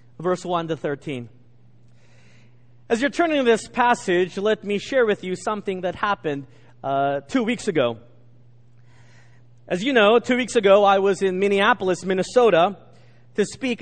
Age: 40-59